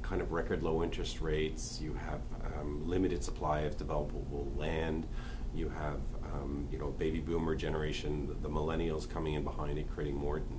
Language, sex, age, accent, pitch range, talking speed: English, male, 40-59, American, 75-90 Hz, 175 wpm